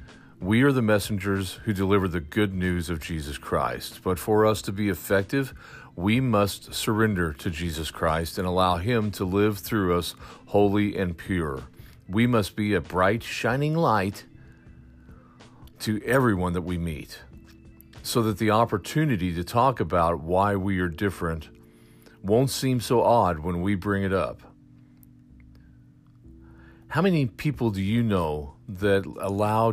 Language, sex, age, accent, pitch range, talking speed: English, male, 40-59, American, 80-110 Hz, 150 wpm